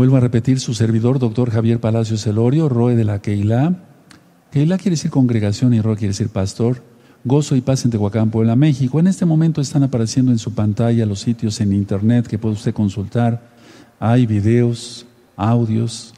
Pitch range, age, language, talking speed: 115-135 Hz, 50-69, Spanish, 180 wpm